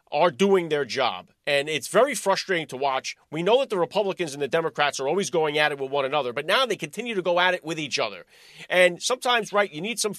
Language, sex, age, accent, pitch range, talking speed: English, male, 40-59, American, 165-210 Hz, 255 wpm